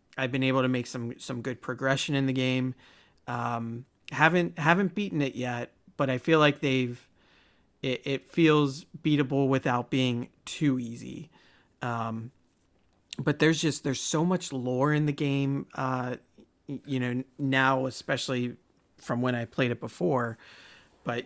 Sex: male